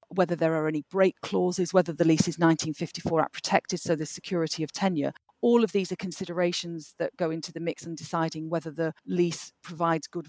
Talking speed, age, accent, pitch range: 205 wpm, 40-59, British, 160-185 Hz